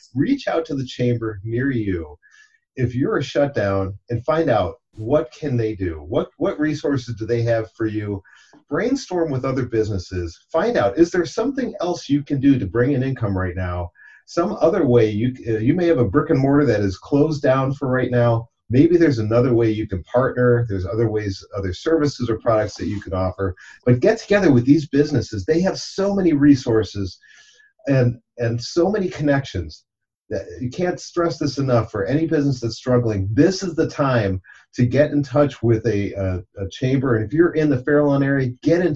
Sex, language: male, English